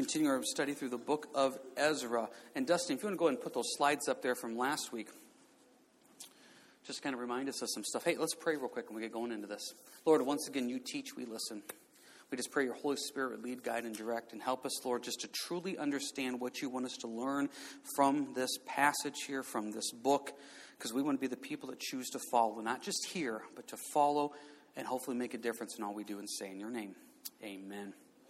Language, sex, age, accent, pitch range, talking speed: English, male, 40-59, American, 130-180 Hz, 245 wpm